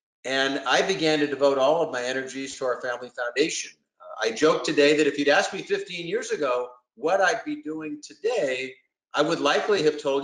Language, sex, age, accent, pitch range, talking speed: English, male, 50-69, American, 140-195 Hz, 205 wpm